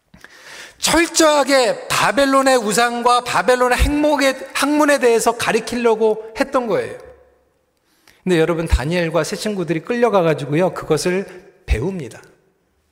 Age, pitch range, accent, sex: 40-59, 235-295 Hz, native, male